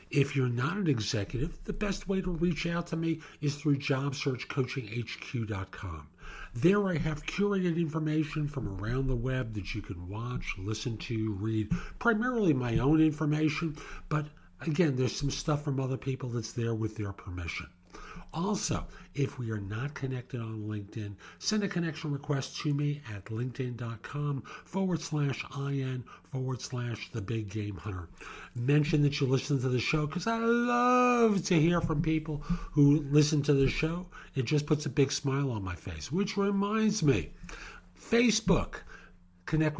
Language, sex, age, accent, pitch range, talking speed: English, male, 50-69, American, 115-155 Hz, 160 wpm